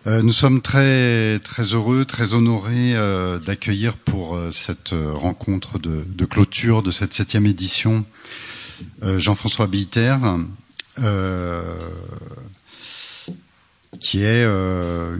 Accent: French